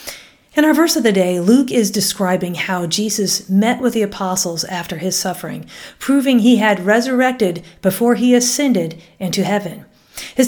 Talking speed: 160 wpm